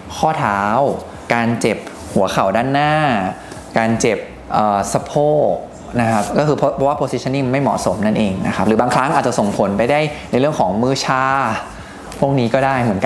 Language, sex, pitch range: Thai, male, 110-140 Hz